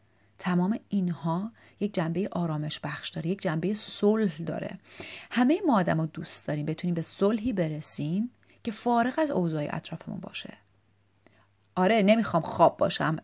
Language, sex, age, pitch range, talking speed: Persian, female, 30-49, 160-210 Hz, 135 wpm